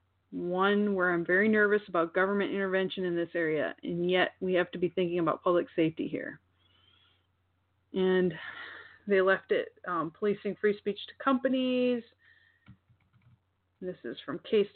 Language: English